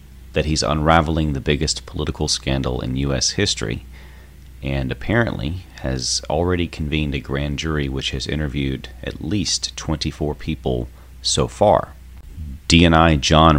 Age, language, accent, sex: 30-49, English, American, male